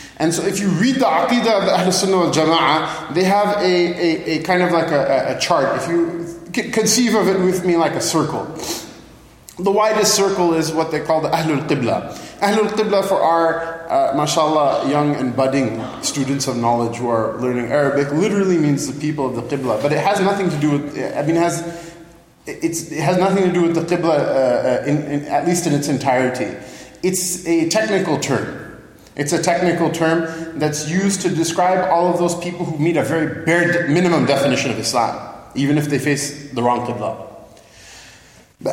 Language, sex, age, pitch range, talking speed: English, male, 20-39, 145-180 Hz, 195 wpm